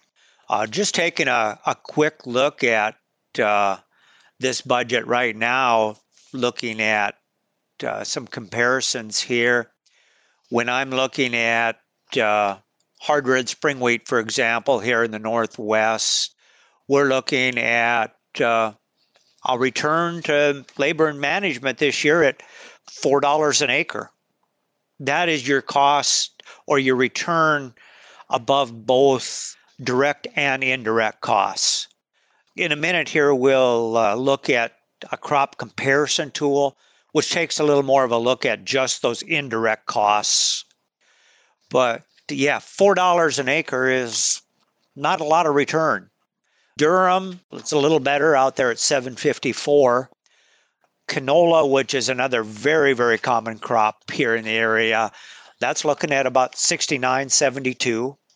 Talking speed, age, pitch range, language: 130 wpm, 50-69, 115-145 Hz, English